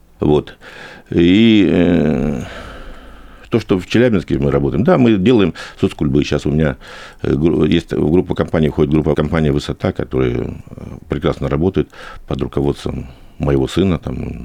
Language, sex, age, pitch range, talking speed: Russian, male, 50-69, 70-90 Hz, 135 wpm